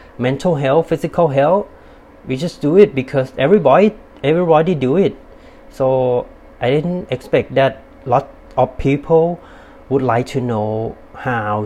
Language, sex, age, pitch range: Thai, male, 30-49, 115-145 Hz